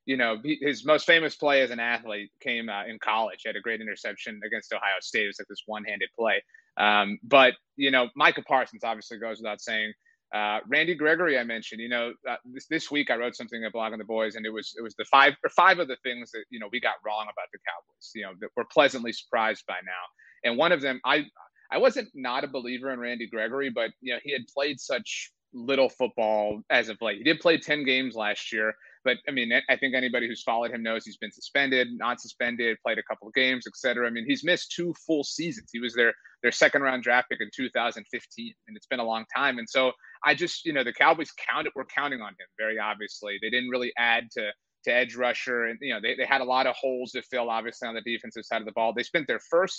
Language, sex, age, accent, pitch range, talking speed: English, male, 30-49, American, 115-140 Hz, 255 wpm